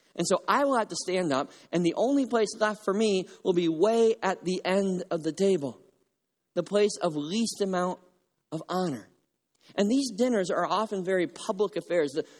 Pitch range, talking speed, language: 145-200 Hz, 195 wpm, English